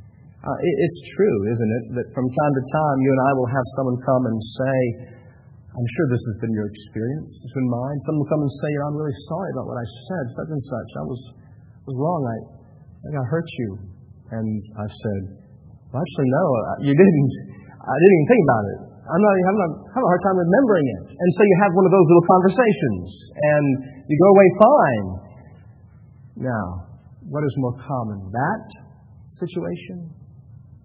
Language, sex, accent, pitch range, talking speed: English, male, American, 110-135 Hz, 200 wpm